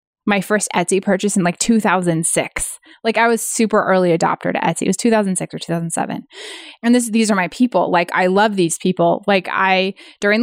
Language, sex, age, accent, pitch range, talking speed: English, female, 20-39, American, 180-230 Hz, 195 wpm